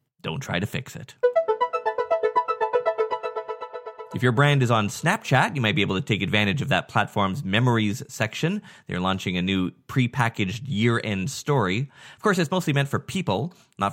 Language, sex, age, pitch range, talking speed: English, male, 30-49, 115-160 Hz, 165 wpm